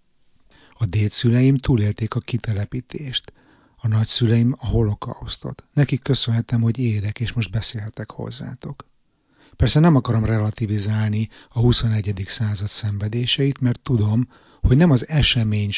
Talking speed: 120 wpm